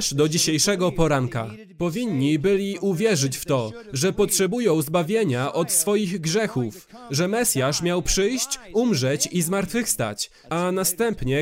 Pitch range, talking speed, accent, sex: 155-215 Hz, 120 wpm, native, male